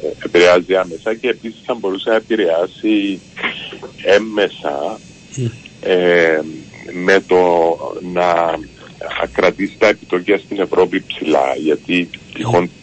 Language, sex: Greek, male